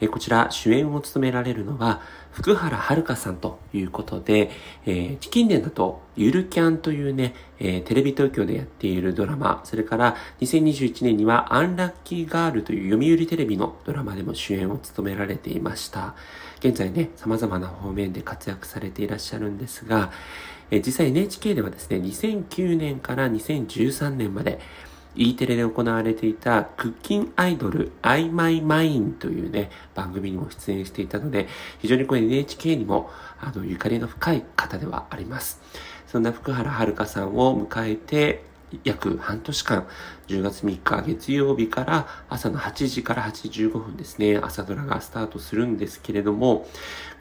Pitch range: 105-150 Hz